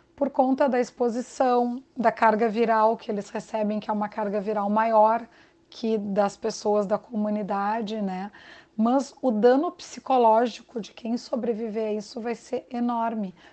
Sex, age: female, 30-49